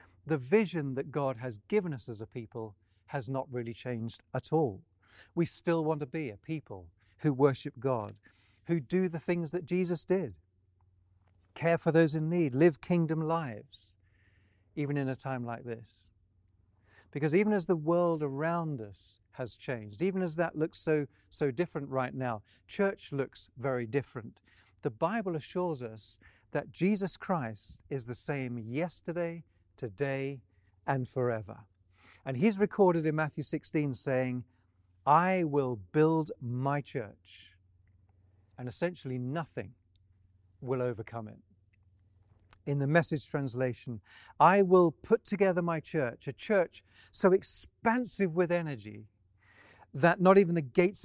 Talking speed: 145 wpm